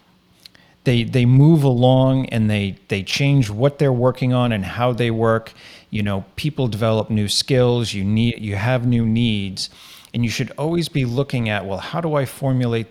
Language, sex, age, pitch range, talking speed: English, male, 40-59, 100-125 Hz, 185 wpm